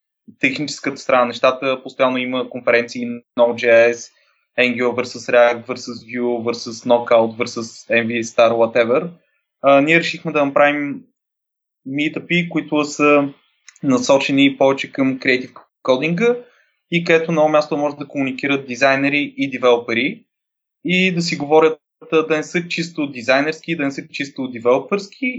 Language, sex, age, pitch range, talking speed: Bulgarian, male, 20-39, 125-160 Hz, 130 wpm